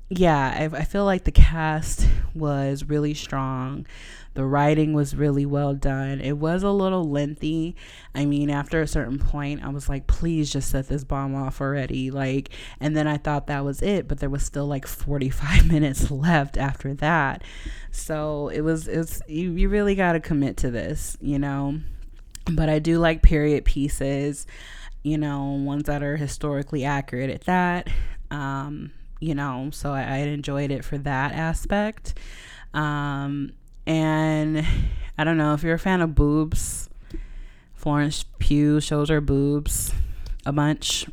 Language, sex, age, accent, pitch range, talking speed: English, female, 20-39, American, 140-155 Hz, 165 wpm